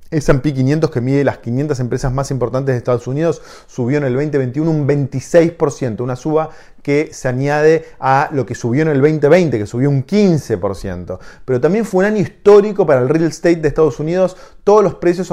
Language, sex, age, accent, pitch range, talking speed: Spanish, male, 30-49, Argentinian, 125-155 Hz, 190 wpm